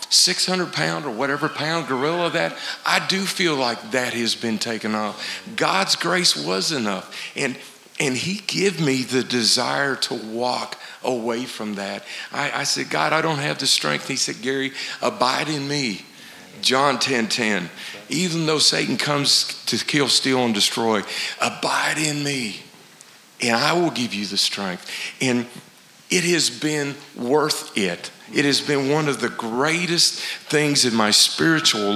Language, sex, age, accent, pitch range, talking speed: English, male, 50-69, American, 115-150 Hz, 160 wpm